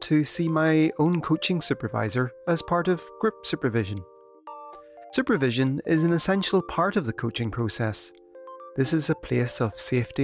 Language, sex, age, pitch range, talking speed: English, male, 30-49, 120-165 Hz, 150 wpm